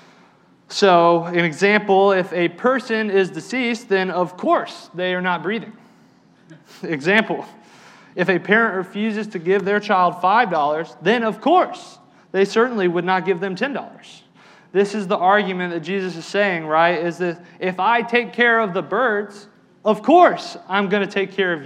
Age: 30-49